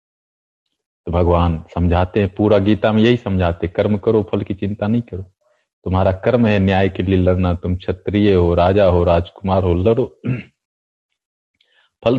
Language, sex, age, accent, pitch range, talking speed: Hindi, male, 40-59, native, 90-115 Hz, 160 wpm